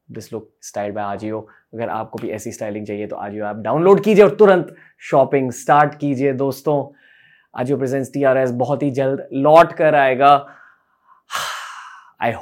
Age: 20-39